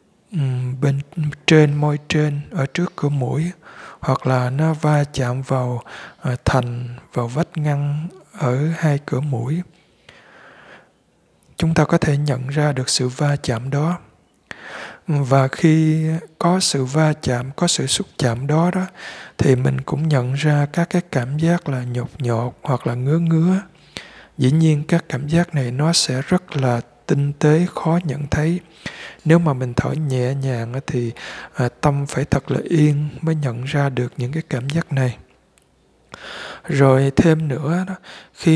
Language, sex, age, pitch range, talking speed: Vietnamese, male, 20-39, 130-160 Hz, 155 wpm